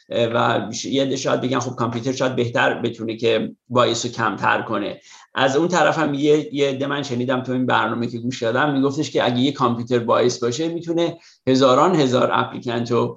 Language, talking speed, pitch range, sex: Persian, 185 wpm, 120-140 Hz, male